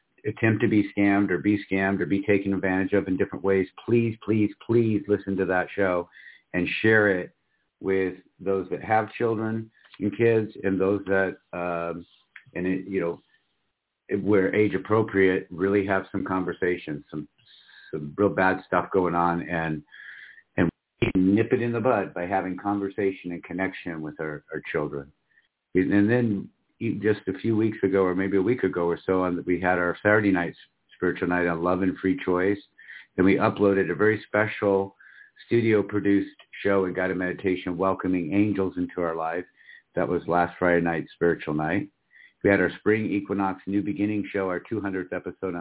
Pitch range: 90-110 Hz